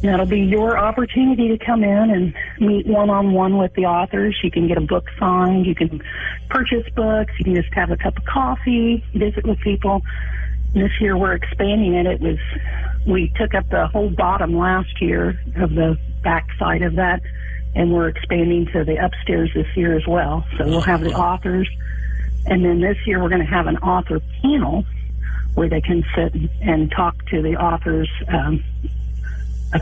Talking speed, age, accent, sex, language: 185 wpm, 50-69, American, female, English